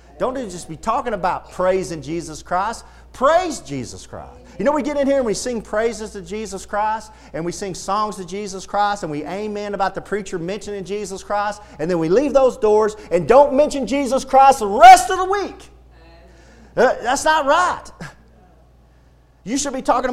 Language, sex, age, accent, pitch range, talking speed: English, male, 40-59, American, 160-260 Hz, 190 wpm